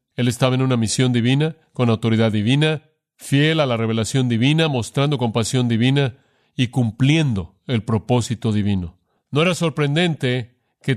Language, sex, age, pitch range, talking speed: Spanish, male, 40-59, 110-135 Hz, 140 wpm